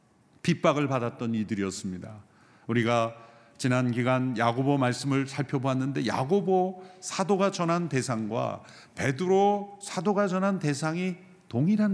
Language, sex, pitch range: Korean, male, 130-195 Hz